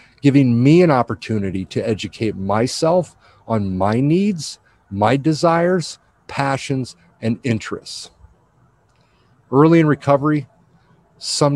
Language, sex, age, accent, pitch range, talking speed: English, male, 50-69, American, 110-140 Hz, 100 wpm